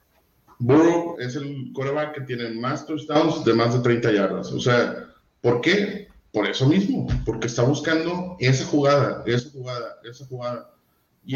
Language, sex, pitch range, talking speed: Spanish, male, 120-155 Hz, 160 wpm